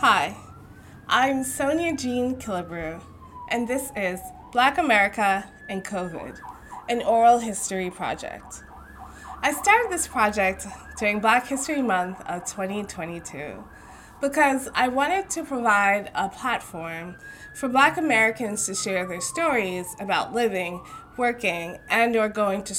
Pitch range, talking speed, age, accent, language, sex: 195-270 Hz, 125 wpm, 20-39, American, English, female